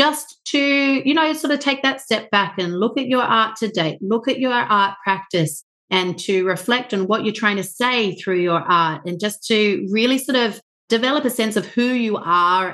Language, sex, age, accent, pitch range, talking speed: English, female, 30-49, Australian, 175-215 Hz, 220 wpm